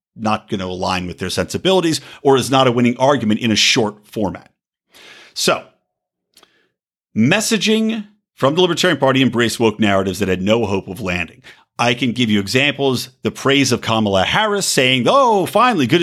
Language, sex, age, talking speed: English, male, 50-69, 170 wpm